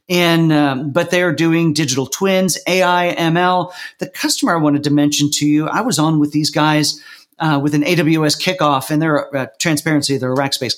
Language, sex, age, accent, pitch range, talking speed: English, male, 40-59, American, 140-170 Hz, 195 wpm